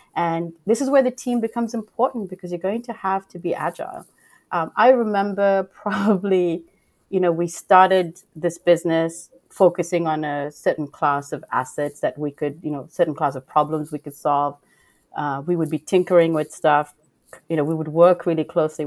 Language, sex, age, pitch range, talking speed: English, female, 30-49, 155-195 Hz, 190 wpm